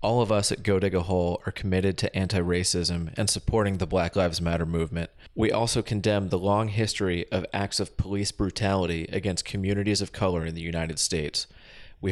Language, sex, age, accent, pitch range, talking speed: English, male, 30-49, American, 90-105 Hz, 195 wpm